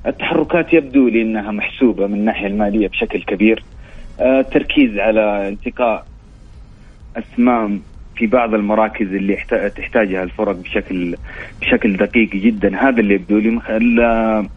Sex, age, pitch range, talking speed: male, 30-49, 105-125 Hz, 120 wpm